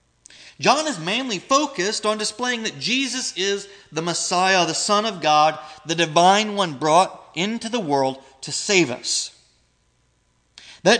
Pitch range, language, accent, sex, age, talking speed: 160-215 Hz, English, American, male, 30-49, 140 wpm